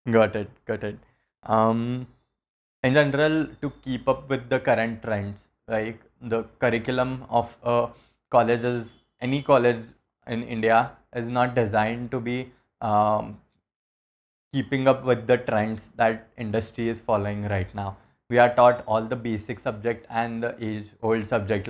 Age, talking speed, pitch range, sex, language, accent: 20-39, 145 wpm, 110-125 Hz, male, English, Indian